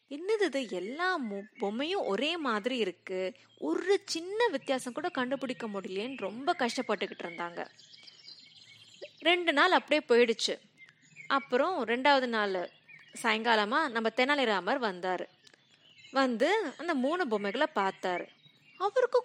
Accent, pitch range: native, 200-290 Hz